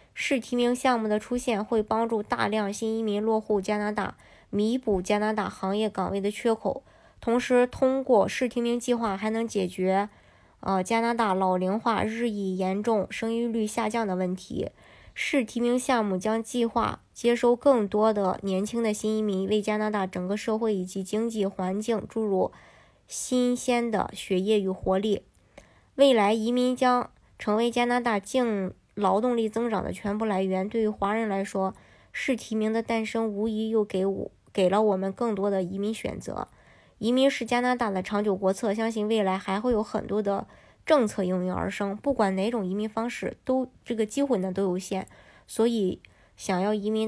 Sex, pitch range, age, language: male, 195-230 Hz, 20-39, Chinese